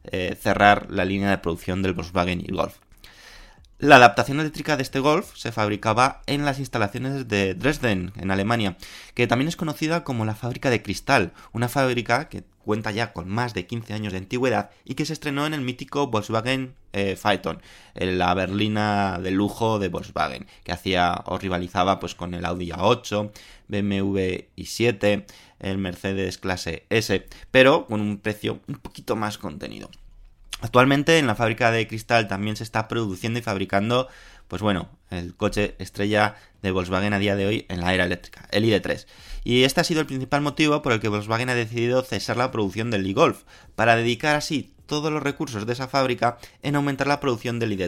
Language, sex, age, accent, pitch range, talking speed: Spanish, male, 20-39, Spanish, 95-125 Hz, 185 wpm